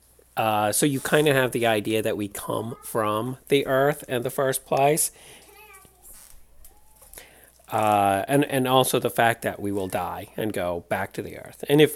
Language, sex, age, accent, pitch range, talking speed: English, male, 40-59, American, 95-130 Hz, 180 wpm